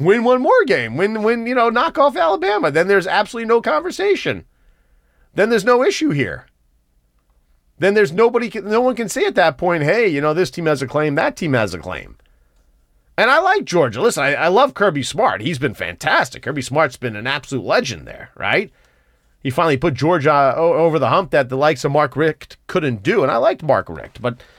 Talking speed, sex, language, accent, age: 210 wpm, male, English, American, 40-59